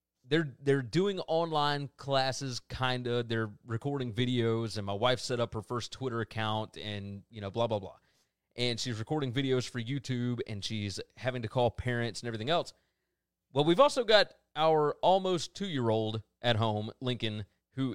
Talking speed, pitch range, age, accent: 170 wpm, 110-150 Hz, 30-49, American